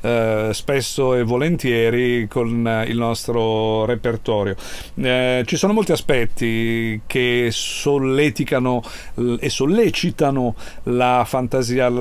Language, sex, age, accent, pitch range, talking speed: Italian, male, 40-59, native, 120-155 Hz, 95 wpm